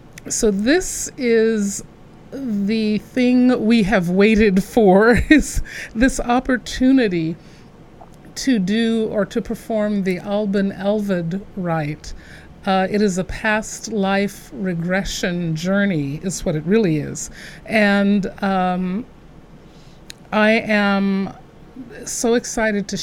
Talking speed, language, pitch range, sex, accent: 105 wpm, English, 180-225 Hz, female, American